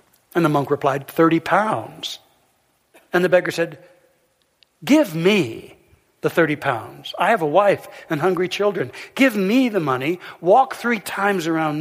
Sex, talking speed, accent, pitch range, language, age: male, 150 wpm, American, 145-180 Hz, English, 60-79